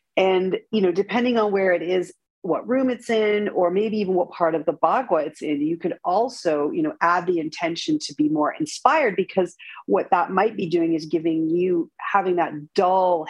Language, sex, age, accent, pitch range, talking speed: English, female, 40-59, American, 165-230 Hz, 210 wpm